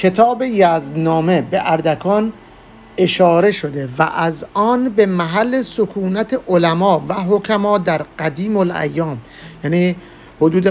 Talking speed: 120 wpm